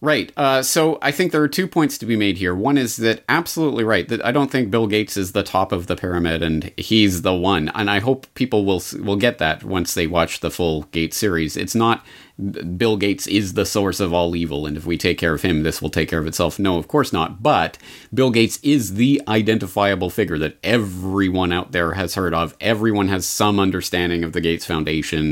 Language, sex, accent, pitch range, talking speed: English, male, American, 85-115 Hz, 230 wpm